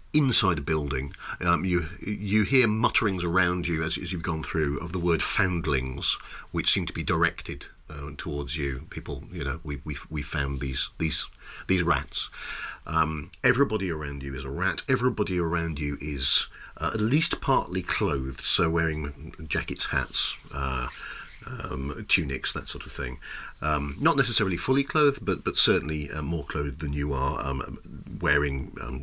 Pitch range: 70-90 Hz